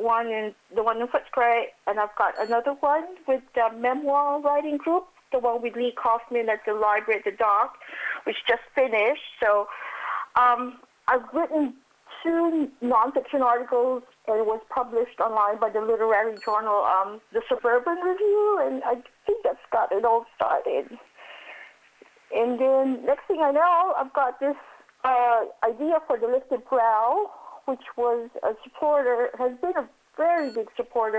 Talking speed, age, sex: 160 wpm, 50-69, female